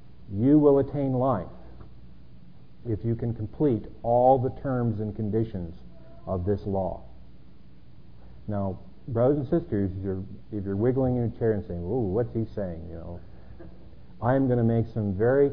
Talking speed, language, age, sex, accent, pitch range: 160 wpm, English, 50-69, male, American, 85-125 Hz